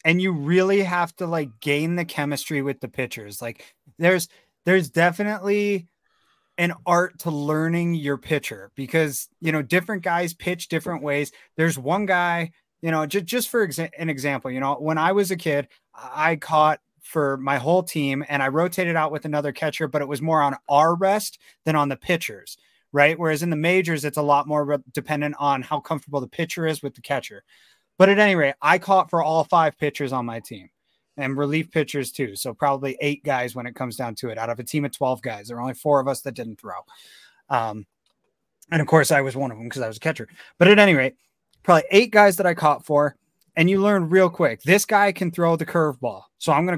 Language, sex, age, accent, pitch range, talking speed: English, male, 30-49, American, 140-175 Hz, 220 wpm